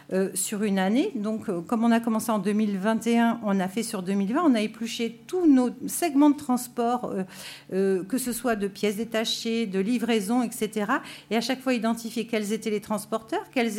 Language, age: French, 50-69